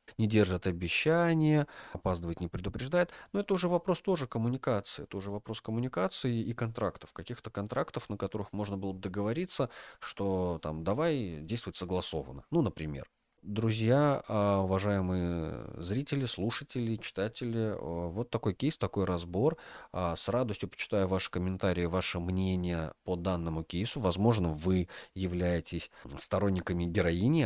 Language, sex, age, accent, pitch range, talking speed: Russian, male, 30-49, native, 85-120 Hz, 125 wpm